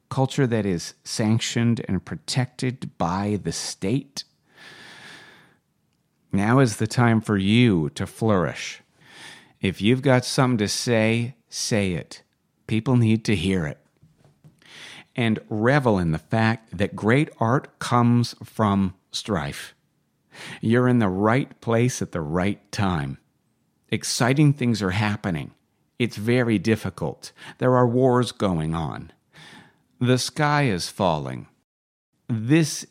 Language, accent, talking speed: English, American, 120 wpm